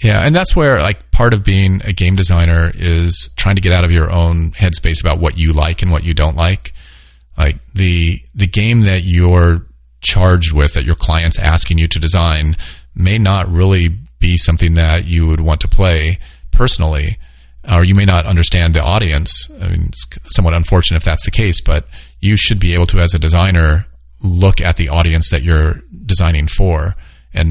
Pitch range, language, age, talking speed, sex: 80-90 Hz, English, 40-59, 195 wpm, male